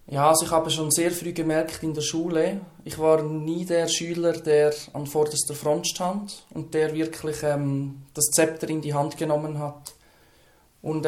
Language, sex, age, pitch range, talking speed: German, male, 20-39, 150-160 Hz, 180 wpm